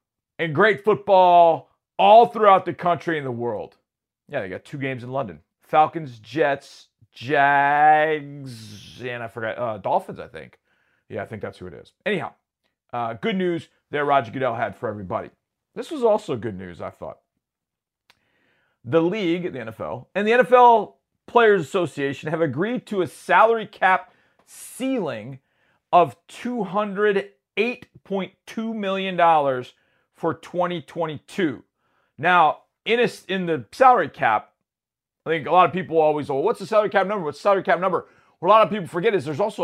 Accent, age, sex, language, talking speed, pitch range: American, 40-59, male, English, 165 wpm, 135-195 Hz